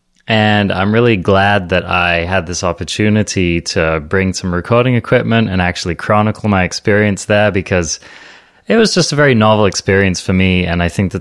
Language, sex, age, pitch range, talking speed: English, male, 20-39, 85-105 Hz, 180 wpm